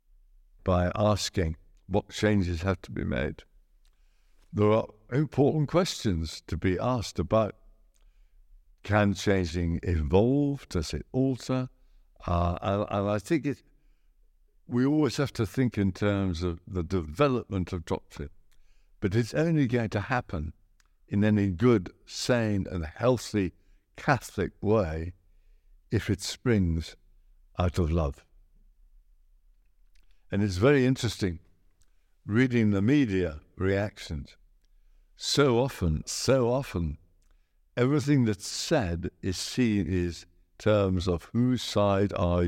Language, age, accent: English, 60-79, British